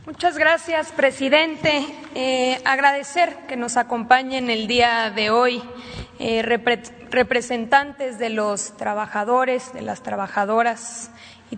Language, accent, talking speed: Spanish, Mexican, 110 wpm